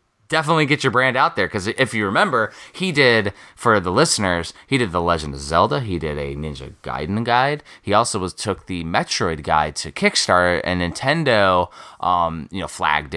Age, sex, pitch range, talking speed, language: 30-49, male, 75-95 Hz, 190 wpm, English